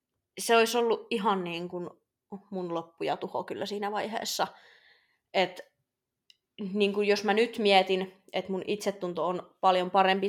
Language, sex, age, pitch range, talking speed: Finnish, female, 20-39, 180-225 Hz, 145 wpm